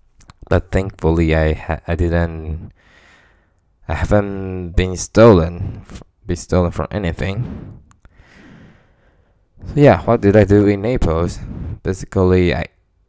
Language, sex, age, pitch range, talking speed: English, male, 20-39, 80-95 Hz, 110 wpm